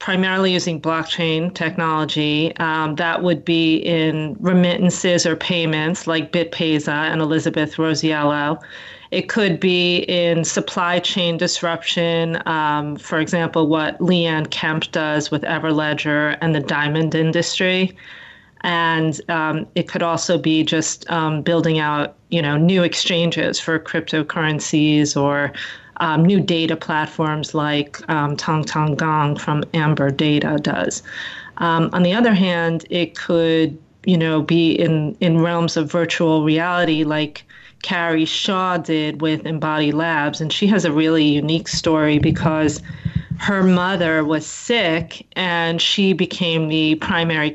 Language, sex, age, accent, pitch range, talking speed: English, female, 30-49, American, 155-175 Hz, 135 wpm